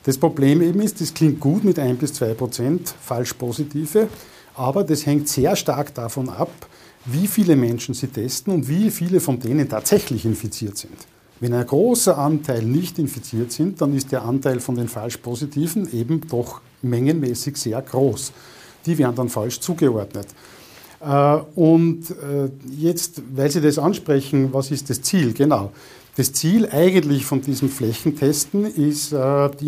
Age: 50-69